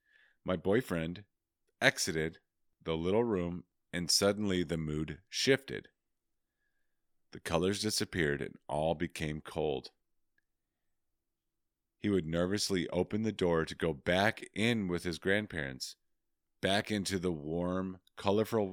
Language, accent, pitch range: English, American, 80-100 Hz